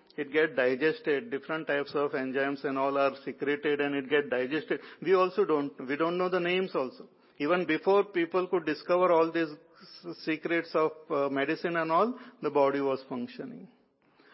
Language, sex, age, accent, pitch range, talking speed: English, male, 50-69, Indian, 140-170 Hz, 165 wpm